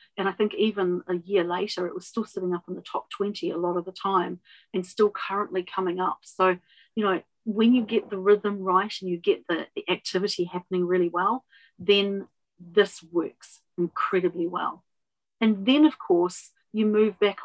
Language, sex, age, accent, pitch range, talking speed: English, female, 40-59, Australian, 180-215 Hz, 190 wpm